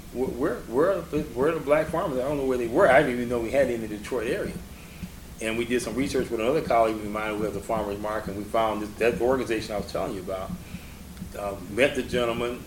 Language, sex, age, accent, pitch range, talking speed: English, male, 30-49, American, 100-120 Hz, 270 wpm